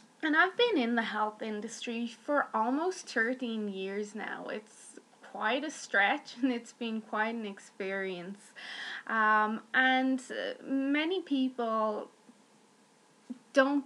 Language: English